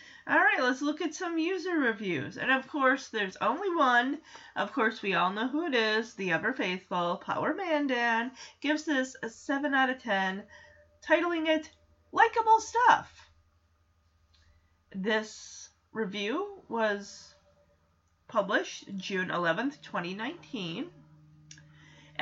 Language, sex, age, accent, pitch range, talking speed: English, female, 30-49, American, 195-285 Hz, 120 wpm